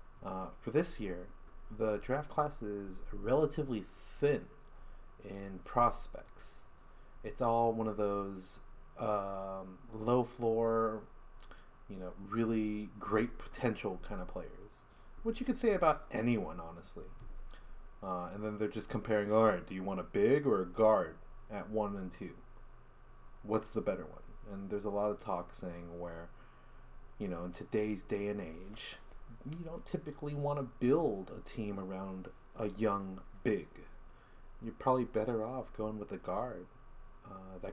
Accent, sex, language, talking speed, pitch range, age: American, male, English, 155 wpm, 95-120 Hz, 30-49